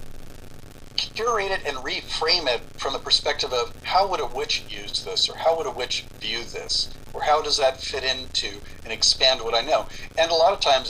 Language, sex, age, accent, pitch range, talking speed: English, male, 50-69, American, 115-135 Hz, 210 wpm